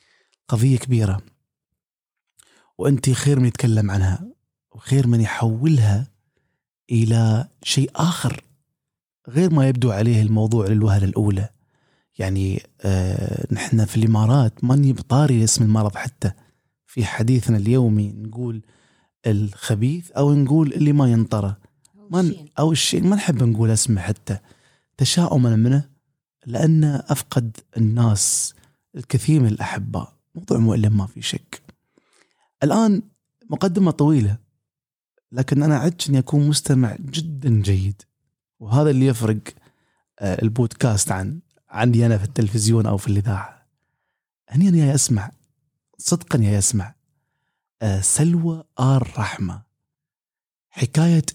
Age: 30-49